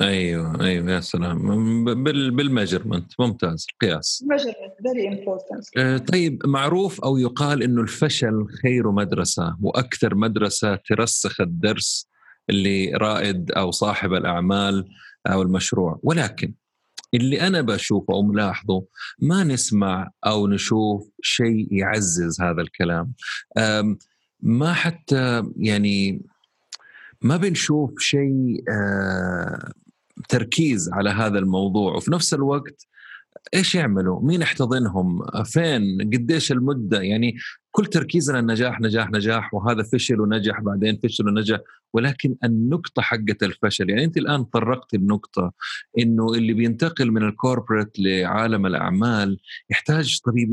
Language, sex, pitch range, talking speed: Arabic, male, 100-135 Hz, 110 wpm